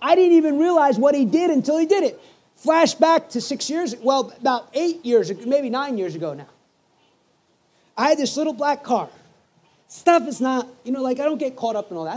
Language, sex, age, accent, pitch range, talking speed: English, male, 30-49, American, 240-295 Hz, 215 wpm